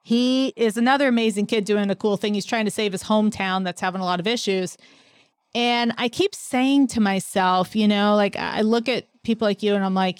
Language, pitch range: English, 195-245 Hz